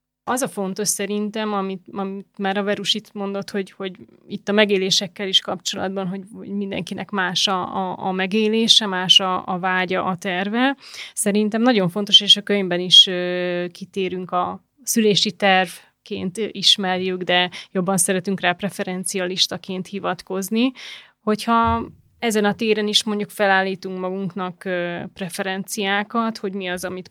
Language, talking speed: Hungarian, 135 wpm